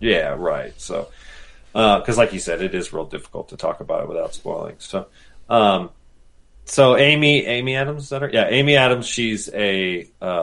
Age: 30-49